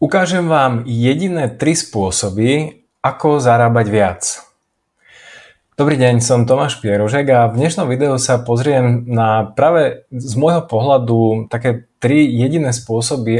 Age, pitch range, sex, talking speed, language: 20-39, 115-135 Hz, male, 125 wpm, Slovak